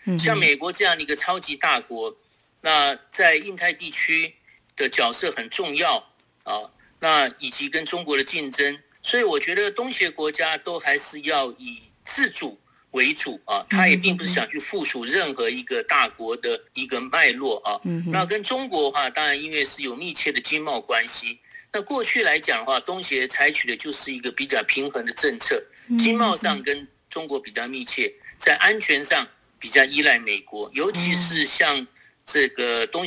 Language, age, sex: Chinese, 50-69, male